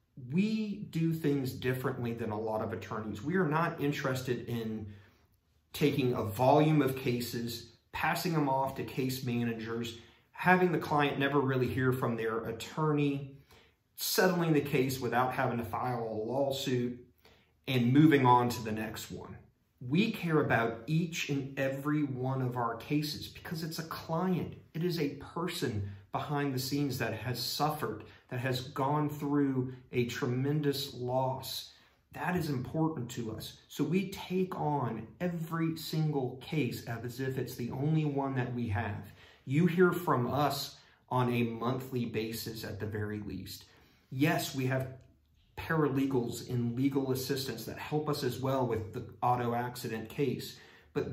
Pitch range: 115-145 Hz